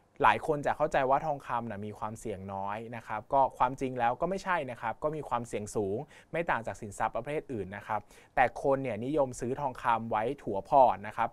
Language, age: Thai, 20-39